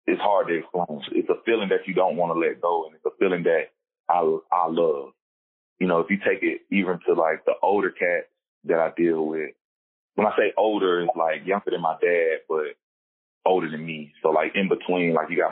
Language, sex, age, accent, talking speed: English, male, 30-49, American, 230 wpm